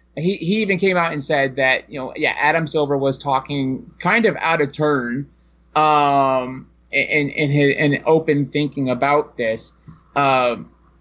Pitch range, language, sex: 145-170 Hz, English, male